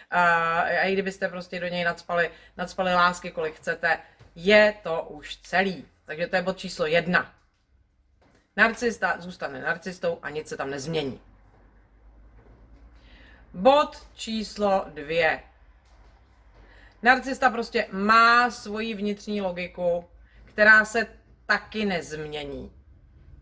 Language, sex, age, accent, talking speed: Czech, female, 30-49, native, 110 wpm